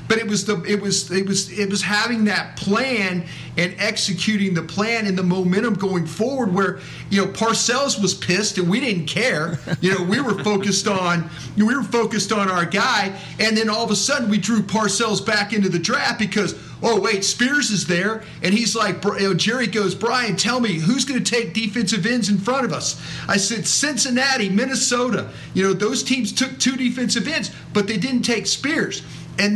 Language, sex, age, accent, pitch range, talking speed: English, male, 40-59, American, 185-230 Hz, 210 wpm